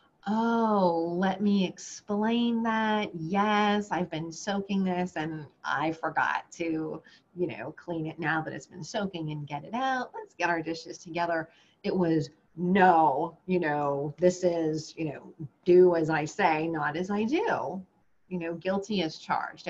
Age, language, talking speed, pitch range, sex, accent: 30-49, English, 165 wpm, 165-210 Hz, female, American